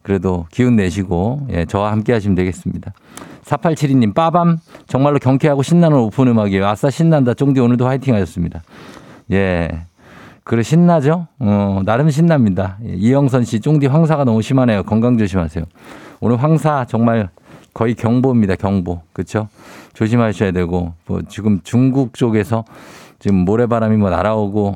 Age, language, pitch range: 50-69, Korean, 100-140 Hz